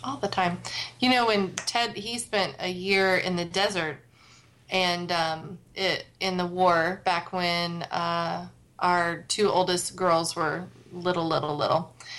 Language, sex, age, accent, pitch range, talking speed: English, female, 30-49, American, 170-195 Hz, 155 wpm